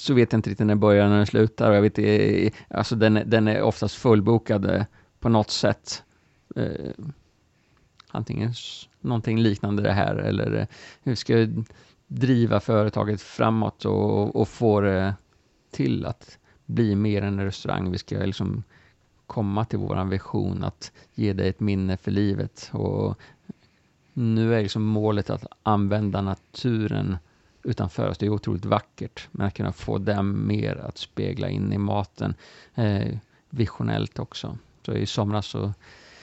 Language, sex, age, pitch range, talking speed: Swedish, male, 30-49, 100-115 Hz, 155 wpm